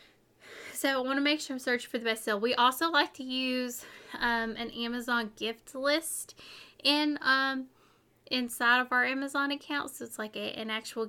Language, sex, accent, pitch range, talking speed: English, female, American, 220-265 Hz, 190 wpm